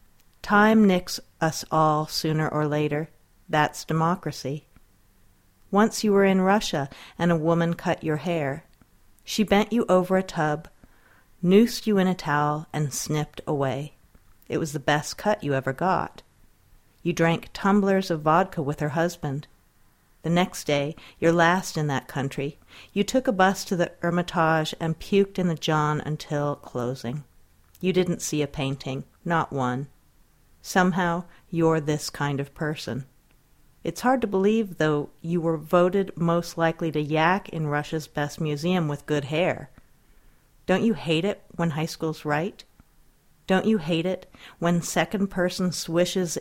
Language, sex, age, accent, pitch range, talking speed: English, female, 50-69, American, 145-180 Hz, 155 wpm